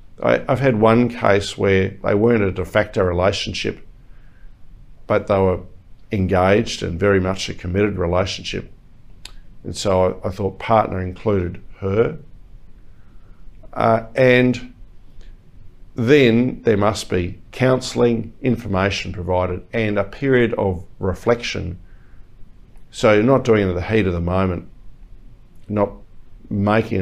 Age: 50-69